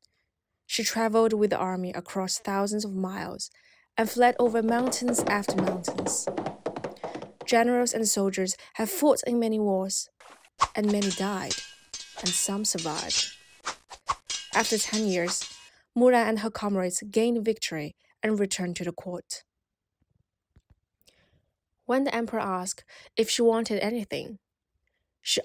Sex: female